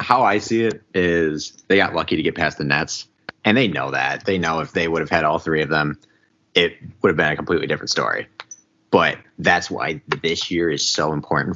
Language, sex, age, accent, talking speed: English, male, 30-49, American, 230 wpm